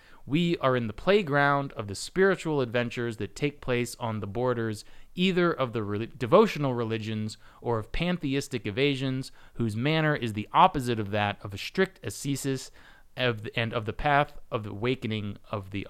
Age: 30-49